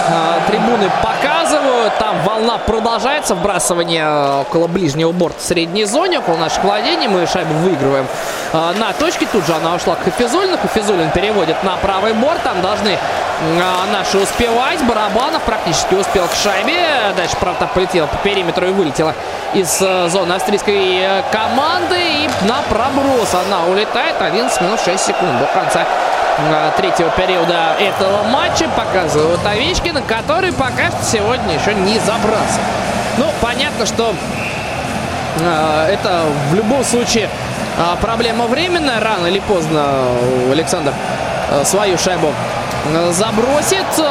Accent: native